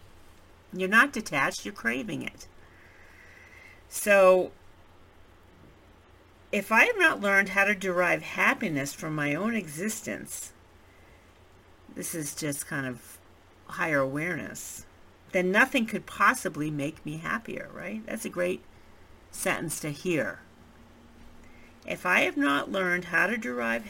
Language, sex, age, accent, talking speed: English, female, 50-69, American, 125 wpm